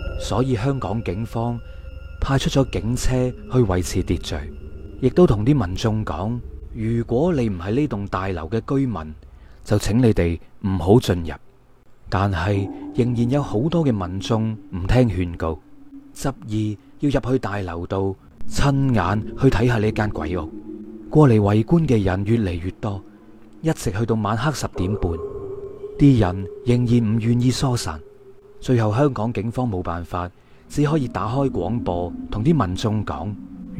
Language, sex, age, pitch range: Chinese, male, 30-49, 95-130 Hz